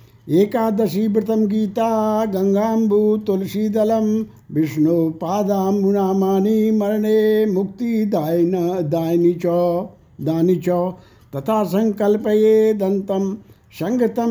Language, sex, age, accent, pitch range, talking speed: Hindi, male, 60-79, native, 175-215 Hz, 50 wpm